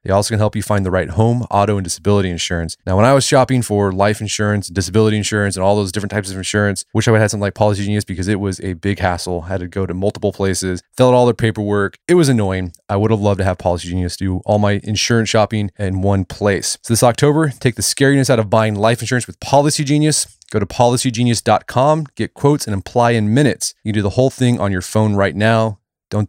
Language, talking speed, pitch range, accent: English, 255 wpm, 100-130 Hz, American